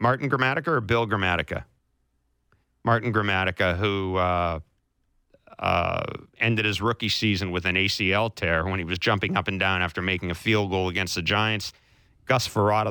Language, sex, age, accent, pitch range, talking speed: English, male, 40-59, American, 95-110 Hz, 165 wpm